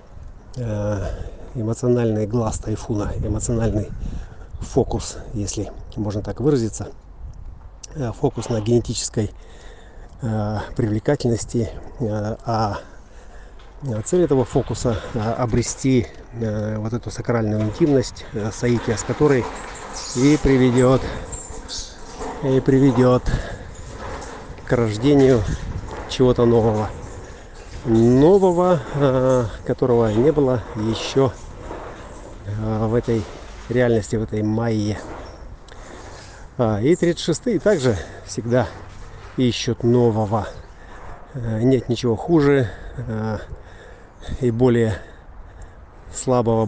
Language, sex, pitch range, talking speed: Russian, male, 105-125 Hz, 70 wpm